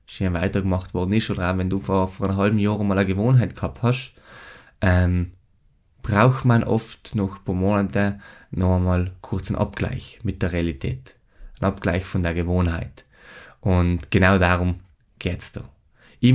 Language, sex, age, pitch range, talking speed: German, male, 20-39, 95-125 Hz, 165 wpm